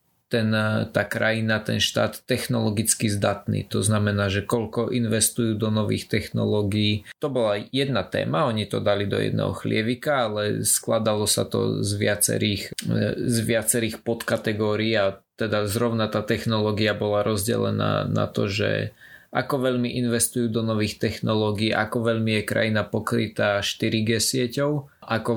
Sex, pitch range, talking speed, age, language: male, 105-120 Hz, 135 wpm, 20-39, Slovak